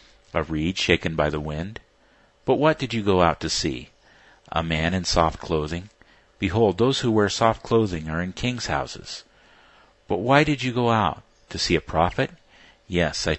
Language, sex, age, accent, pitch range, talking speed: English, male, 50-69, American, 80-110 Hz, 185 wpm